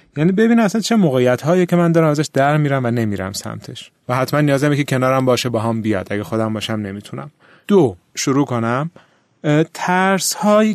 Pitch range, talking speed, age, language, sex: 115-170 Hz, 185 wpm, 30-49, Persian, male